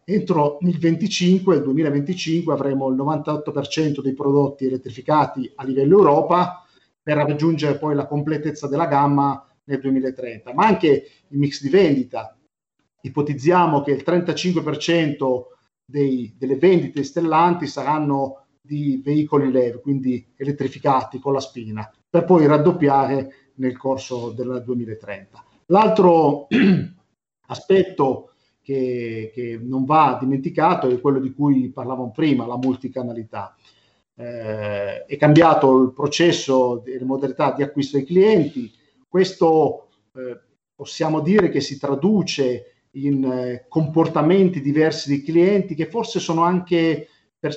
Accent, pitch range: native, 130-165 Hz